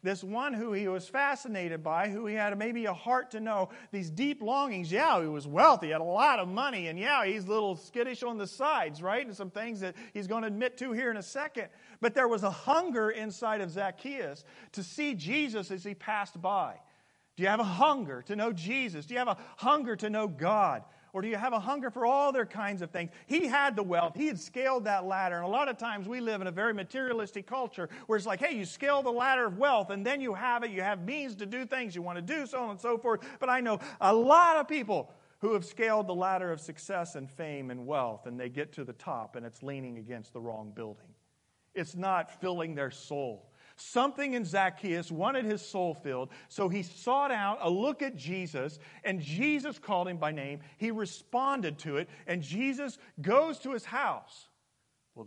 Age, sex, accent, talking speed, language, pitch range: 40-59, male, American, 230 wpm, English, 175-245 Hz